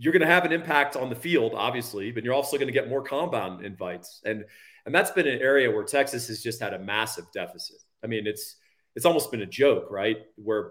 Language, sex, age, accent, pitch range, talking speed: English, male, 40-59, American, 110-140 Hz, 240 wpm